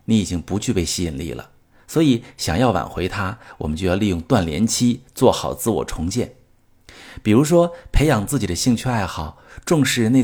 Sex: male